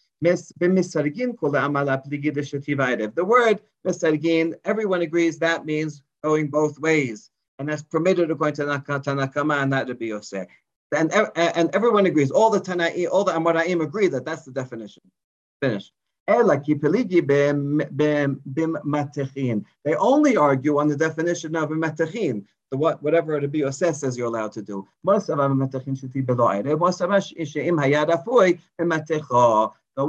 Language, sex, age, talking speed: English, male, 40-59, 115 wpm